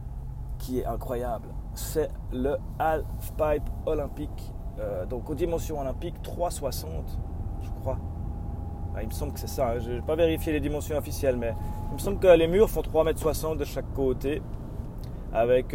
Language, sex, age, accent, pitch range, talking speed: French, male, 30-49, French, 120-160 Hz, 170 wpm